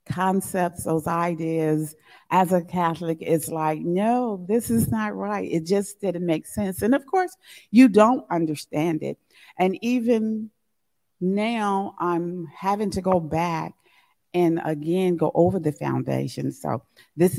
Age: 50-69